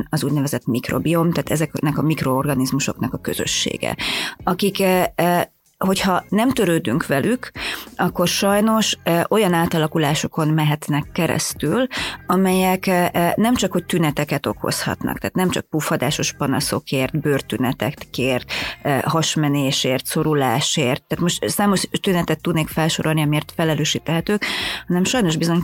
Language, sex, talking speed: Hungarian, female, 105 wpm